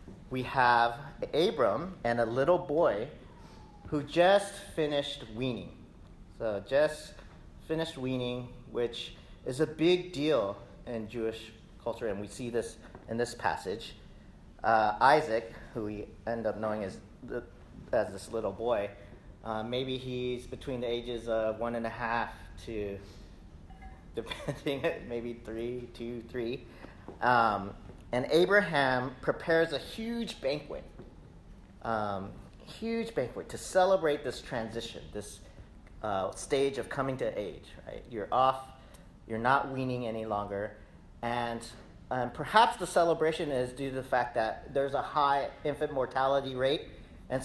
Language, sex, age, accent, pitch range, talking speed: English, male, 40-59, American, 115-150 Hz, 135 wpm